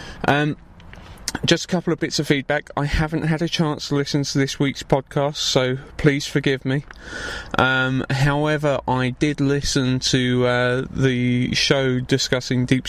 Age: 30-49